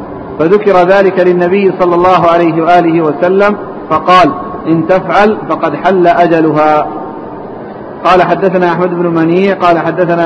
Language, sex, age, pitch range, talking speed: Arabic, male, 50-69, 165-185 Hz, 125 wpm